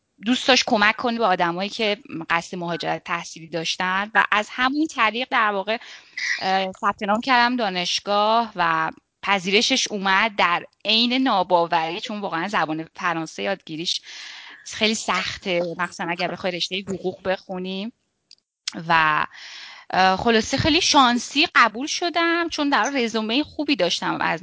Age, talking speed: 10-29, 125 wpm